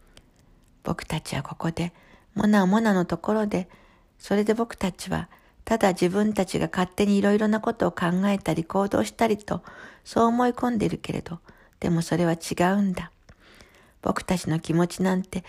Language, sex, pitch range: Japanese, female, 165-205 Hz